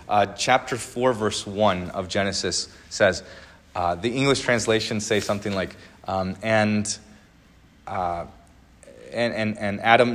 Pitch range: 100-130 Hz